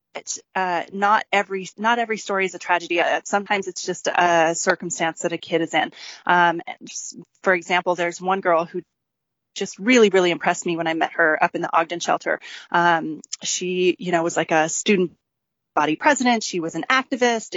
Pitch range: 175-215 Hz